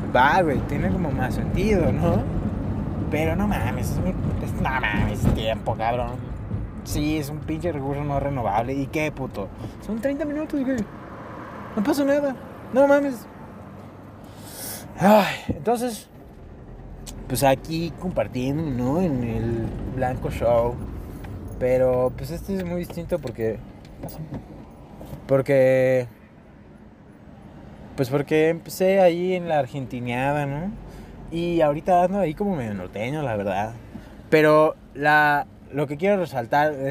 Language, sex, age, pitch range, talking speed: Spanish, male, 20-39, 115-160 Hz, 125 wpm